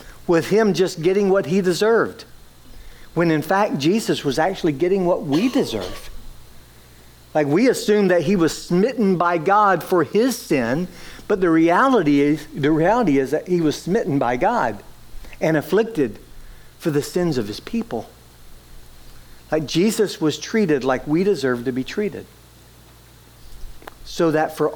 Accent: American